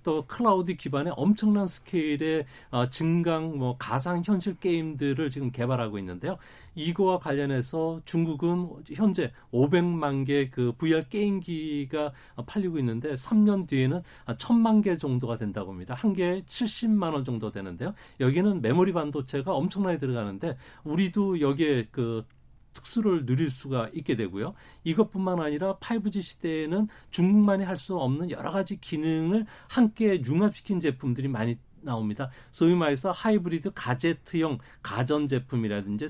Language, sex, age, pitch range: Korean, male, 40-59, 130-185 Hz